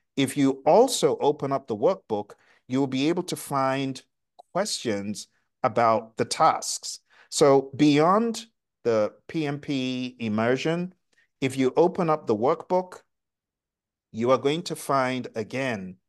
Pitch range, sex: 110-150 Hz, male